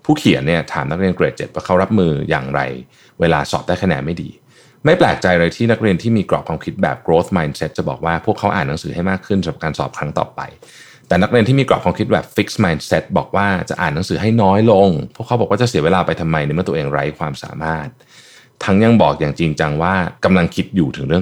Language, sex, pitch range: Thai, male, 80-115 Hz